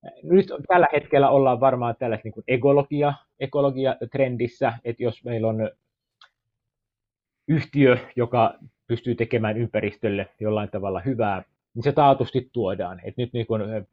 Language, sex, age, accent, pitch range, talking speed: Finnish, male, 30-49, native, 110-140 Hz, 120 wpm